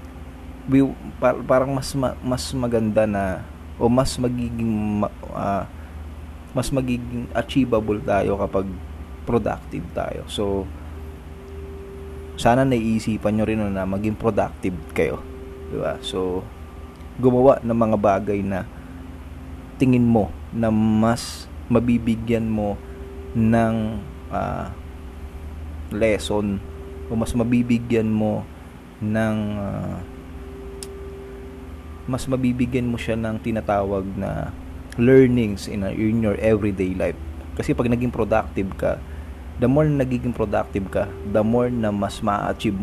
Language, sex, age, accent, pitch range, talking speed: Filipino, male, 20-39, native, 80-115 Hz, 110 wpm